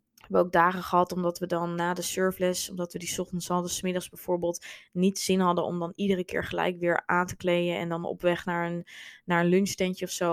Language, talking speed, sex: Dutch, 245 wpm, female